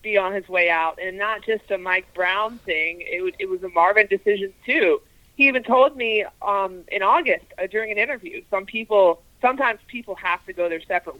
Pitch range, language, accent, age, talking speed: 175-220 Hz, English, American, 30-49, 215 wpm